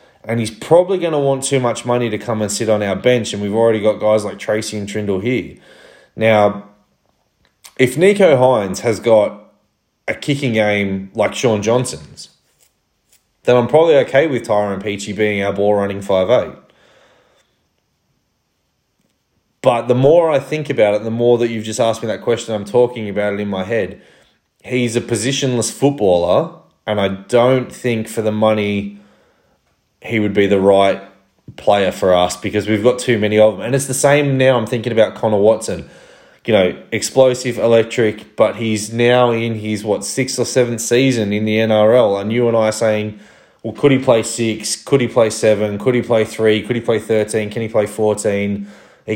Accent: Australian